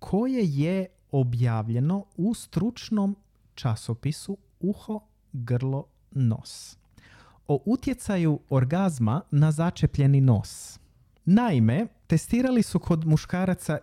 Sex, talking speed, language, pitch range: male, 85 wpm, Croatian, 120-180 Hz